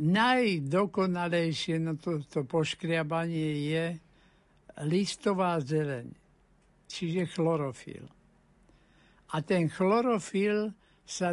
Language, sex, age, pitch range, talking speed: Slovak, male, 60-79, 160-200 Hz, 75 wpm